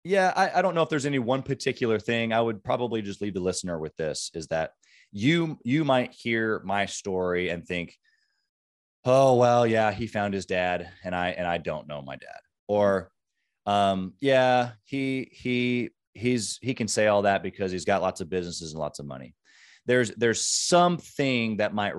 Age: 30-49